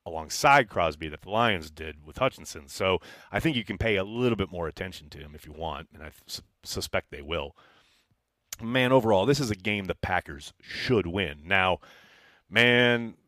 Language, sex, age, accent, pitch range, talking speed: English, male, 30-49, American, 100-140 Hz, 185 wpm